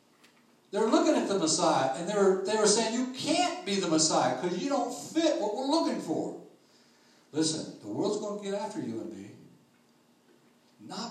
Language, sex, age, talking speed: English, male, 60-79, 185 wpm